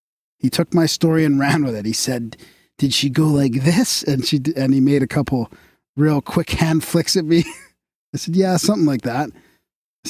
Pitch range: 135-165 Hz